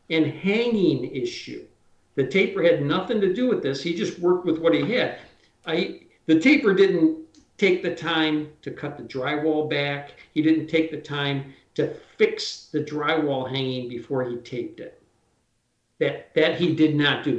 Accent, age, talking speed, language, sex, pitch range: American, 50-69, 175 wpm, English, male, 140-180 Hz